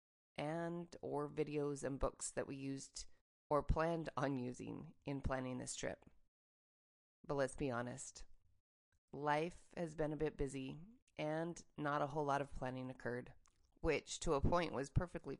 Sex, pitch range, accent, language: female, 130-160 Hz, American, English